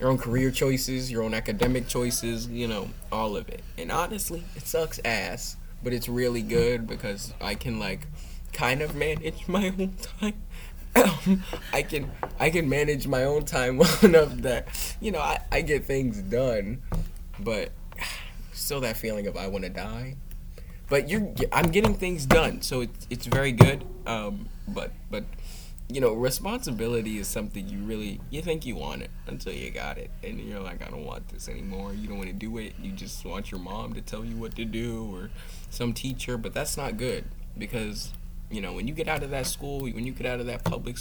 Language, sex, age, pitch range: English, male, 20-39, 105-140 Hz